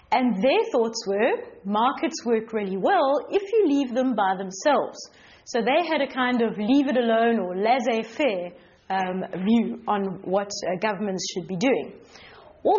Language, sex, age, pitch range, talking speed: English, female, 30-49, 220-290 Hz, 150 wpm